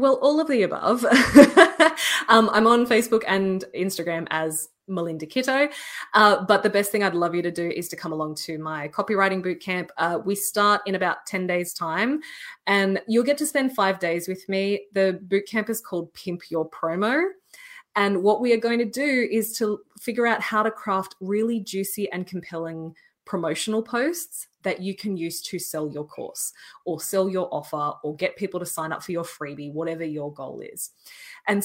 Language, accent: English, Australian